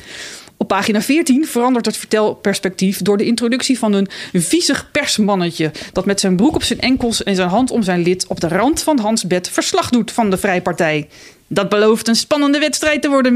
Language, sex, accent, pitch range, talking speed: Dutch, female, Dutch, 190-240 Hz, 200 wpm